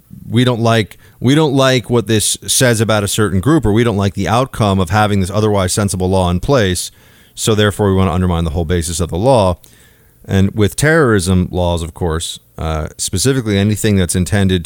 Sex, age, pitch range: male, 30-49, 90-115 Hz